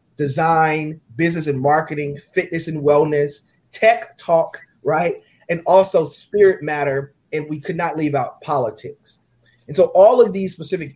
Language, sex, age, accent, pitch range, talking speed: English, male, 30-49, American, 150-195 Hz, 150 wpm